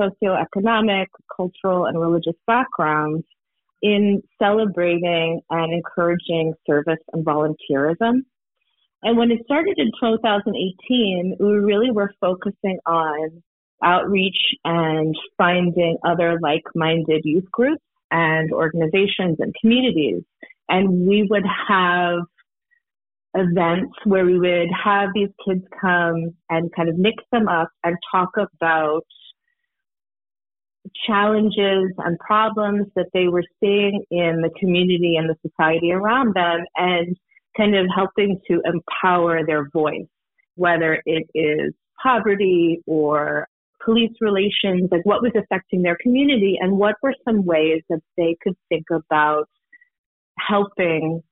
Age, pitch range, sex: 30-49, 165-205 Hz, female